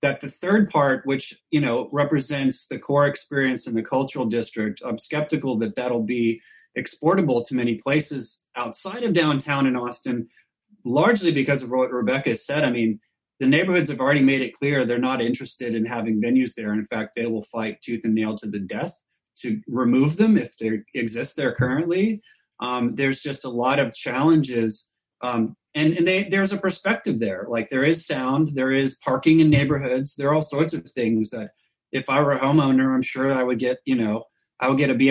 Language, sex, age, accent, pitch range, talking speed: English, male, 30-49, American, 120-155 Hz, 200 wpm